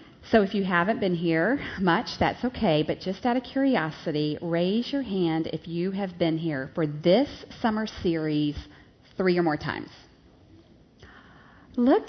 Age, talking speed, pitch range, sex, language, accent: 40-59, 155 wpm, 170-255 Hz, female, English, American